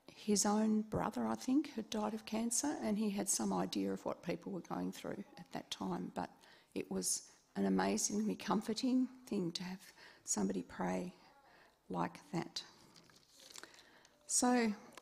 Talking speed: 150 wpm